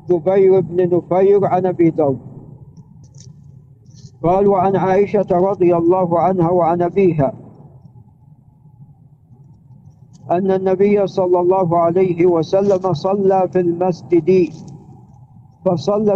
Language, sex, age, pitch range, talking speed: Arabic, male, 50-69, 145-195 Hz, 85 wpm